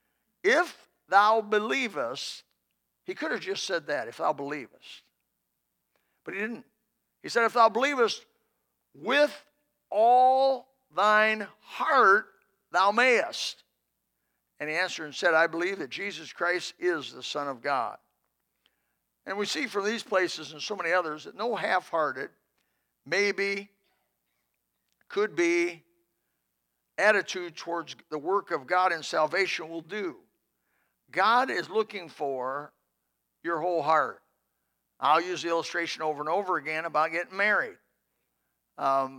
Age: 60-79